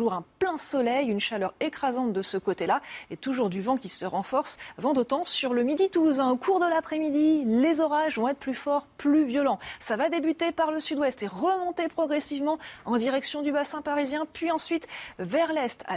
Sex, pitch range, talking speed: female, 230-310 Hz, 200 wpm